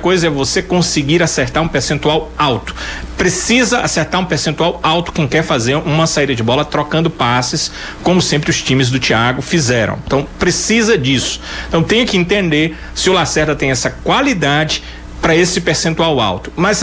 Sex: male